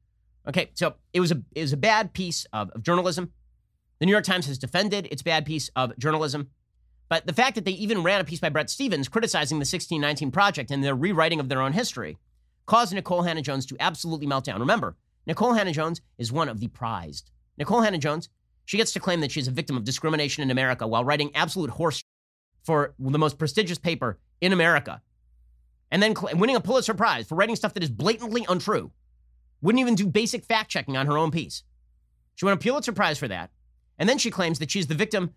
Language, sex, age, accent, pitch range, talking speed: English, male, 30-49, American, 130-195 Hz, 210 wpm